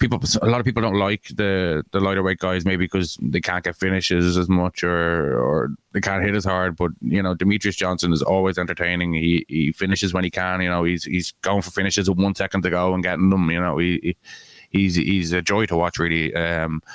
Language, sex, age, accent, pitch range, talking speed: English, male, 20-39, Irish, 85-95 Hz, 235 wpm